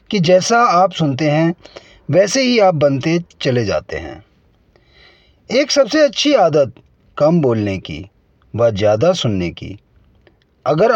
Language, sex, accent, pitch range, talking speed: Hindi, male, native, 135-205 Hz, 130 wpm